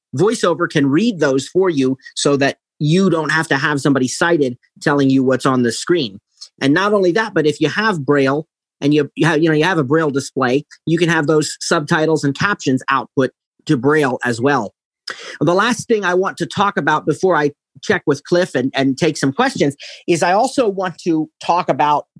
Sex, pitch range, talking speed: male, 140-180 Hz, 210 wpm